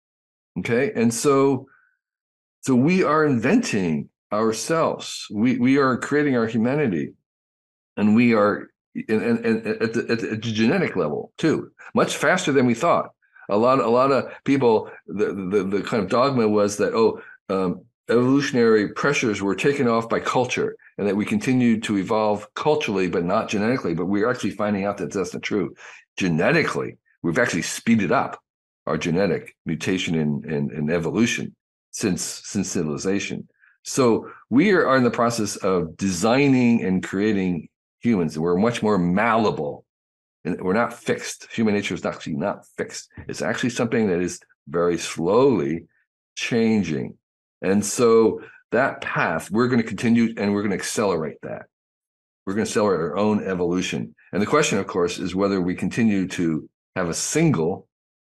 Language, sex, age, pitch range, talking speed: English, male, 50-69, 95-135 Hz, 160 wpm